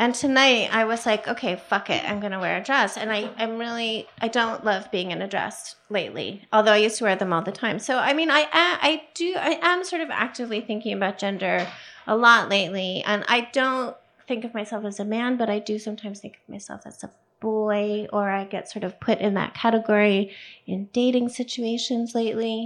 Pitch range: 205-270 Hz